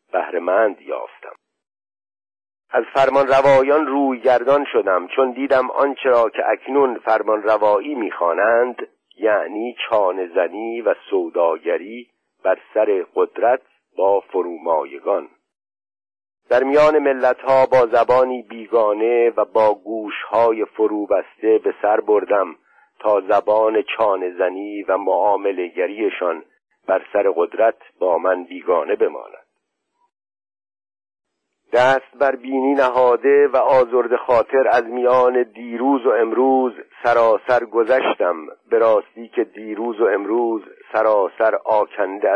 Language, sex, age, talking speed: Persian, male, 50-69, 105 wpm